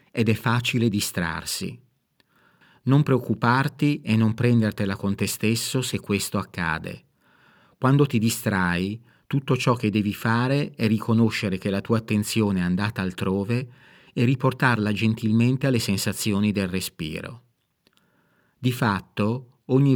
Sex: male